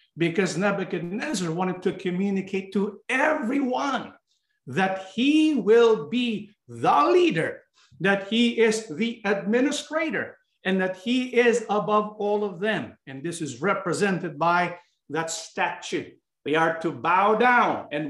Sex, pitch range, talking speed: male, 165-210 Hz, 130 wpm